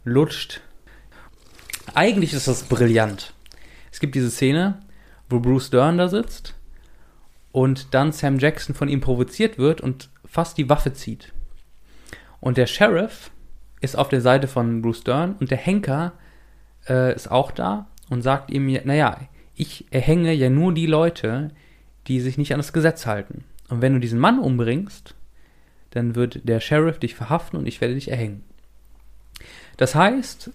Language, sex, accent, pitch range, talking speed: German, male, German, 120-160 Hz, 155 wpm